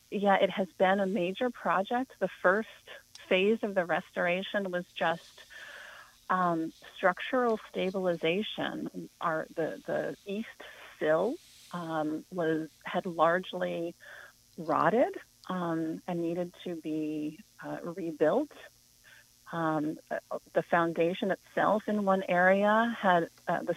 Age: 40-59